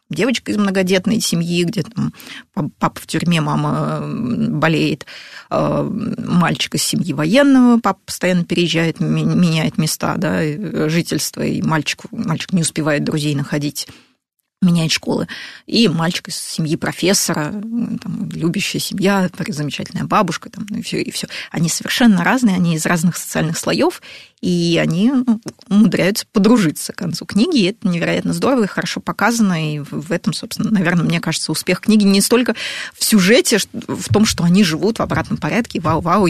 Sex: female